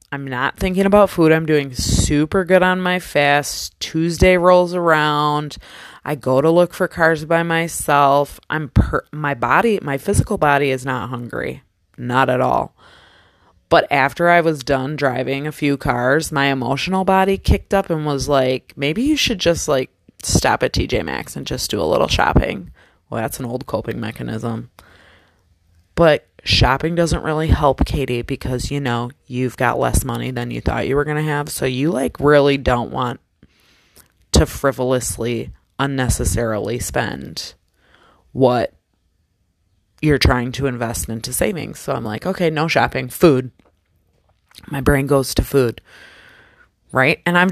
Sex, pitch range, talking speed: female, 125-165 Hz, 160 wpm